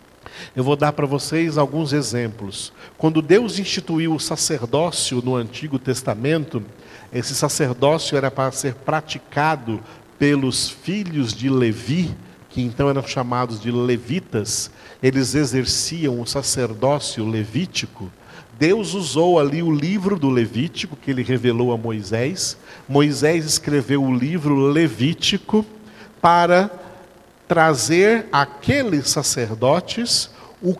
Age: 50-69